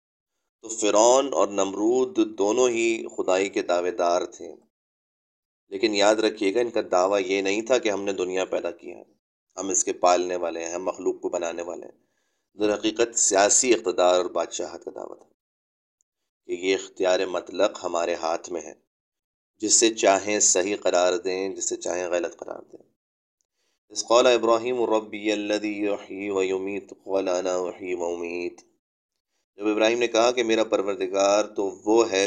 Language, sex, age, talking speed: Urdu, male, 30-49, 155 wpm